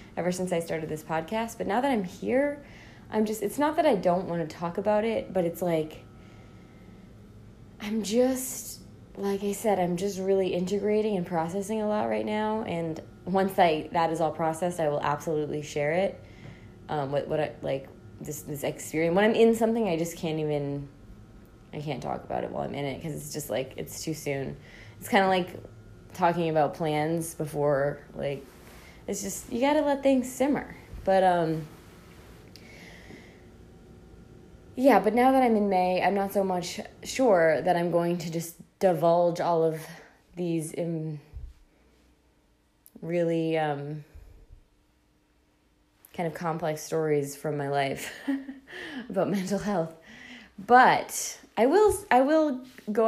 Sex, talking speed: female, 165 wpm